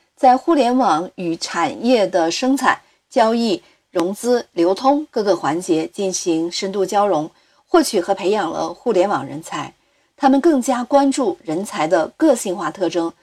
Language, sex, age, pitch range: Chinese, female, 50-69, 175-240 Hz